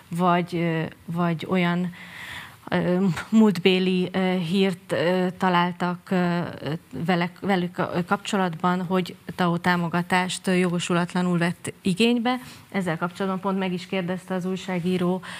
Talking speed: 105 wpm